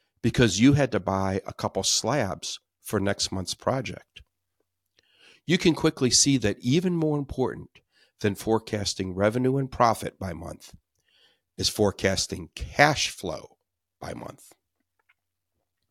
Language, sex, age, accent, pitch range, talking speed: English, male, 60-79, American, 95-130 Hz, 125 wpm